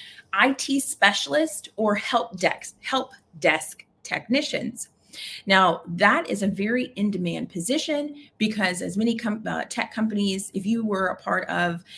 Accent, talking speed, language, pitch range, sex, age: American, 145 wpm, English, 175-225 Hz, female, 30-49